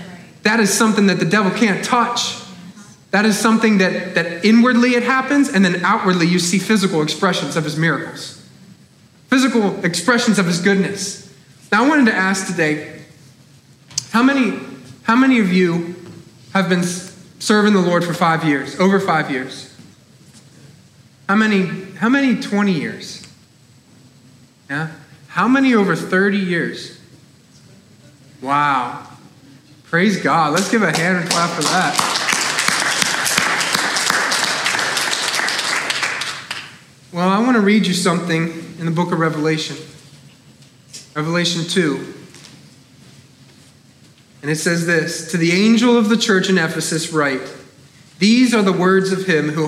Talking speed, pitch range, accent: 135 wpm, 155-205 Hz, American